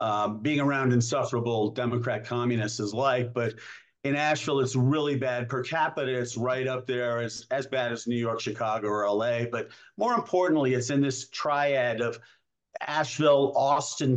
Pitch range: 120-145 Hz